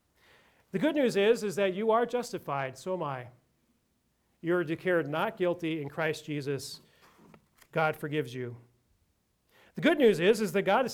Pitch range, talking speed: 145-180 Hz, 170 wpm